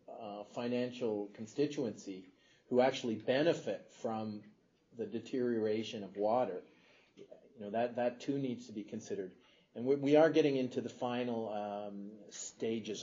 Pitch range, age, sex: 110-135 Hz, 40-59, male